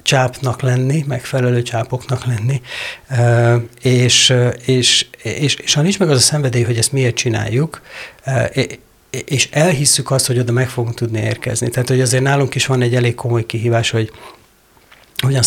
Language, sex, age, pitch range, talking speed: Hungarian, male, 60-79, 115-130 Hz, 160 wpm